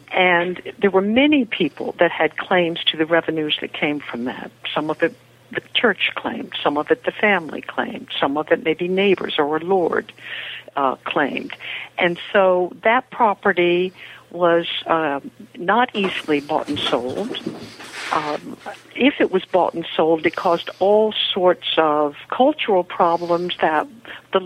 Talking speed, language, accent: 155 wpm, English, American